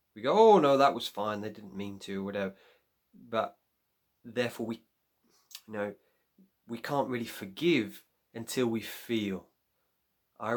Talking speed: 150 wpm